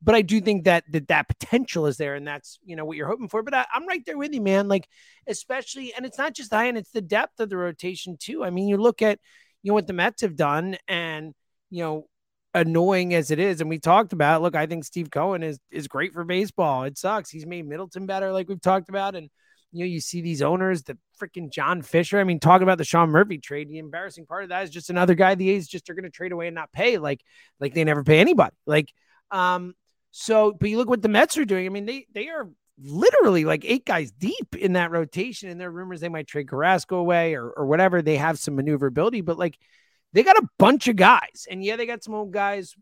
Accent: American